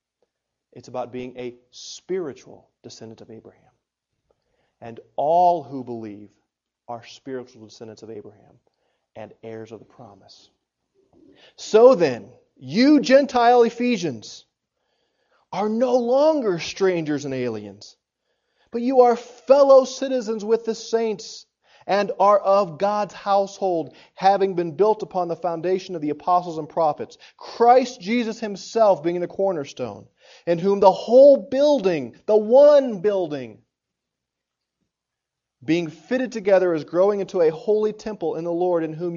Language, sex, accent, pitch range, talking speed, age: English, male, American, 165-230 Hz, 130 wpm, 30-49